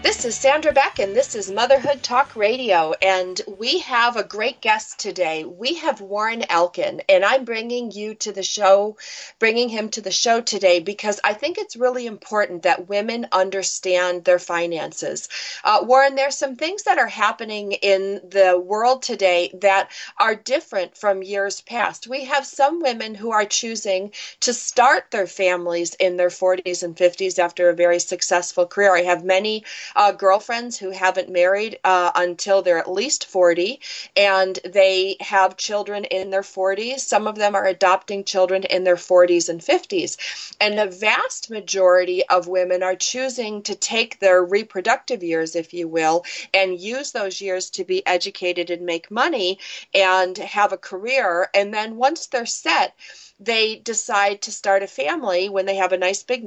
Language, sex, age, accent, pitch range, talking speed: English, female, 40-59, American, 185-235 Hz, 175 wpm